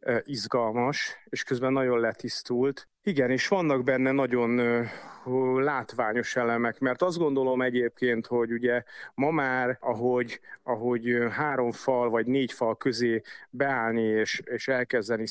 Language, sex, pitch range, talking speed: Hungarian, male, 115-135 Hz, 125 wpm